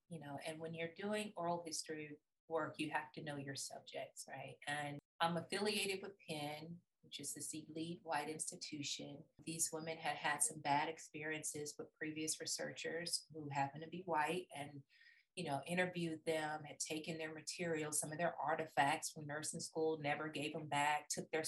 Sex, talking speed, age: female, 180 wpm, 30-49